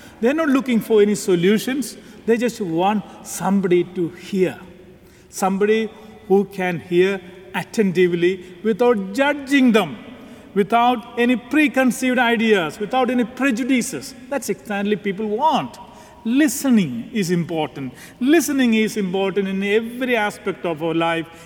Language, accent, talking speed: English, Indian, 125 wpm